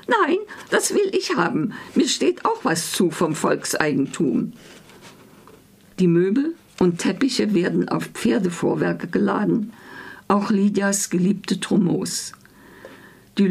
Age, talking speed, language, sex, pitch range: 50-69, 110 wpm, German, female, 185-230 Hz